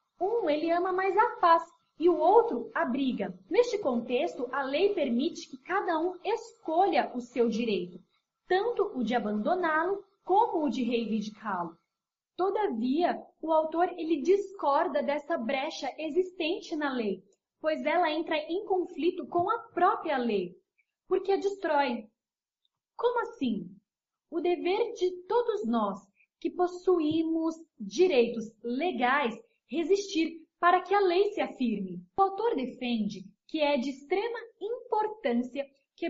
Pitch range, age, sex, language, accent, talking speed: 245-375 Hz, 10-29, female, Portuguese, Brazilian, 135 wpm